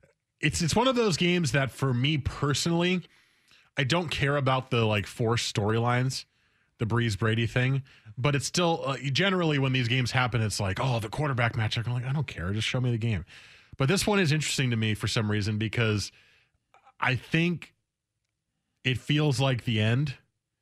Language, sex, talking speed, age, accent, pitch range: English, male, 185 wpm, 20-39, American, 105-135 Hz